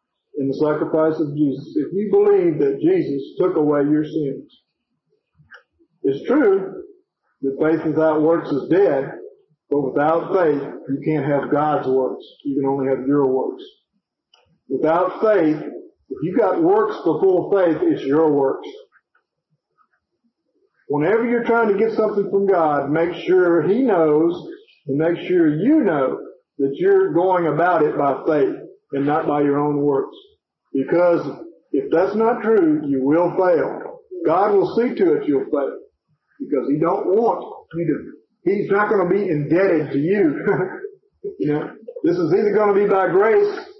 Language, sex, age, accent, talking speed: English, male, 50-69, American, 160 wpm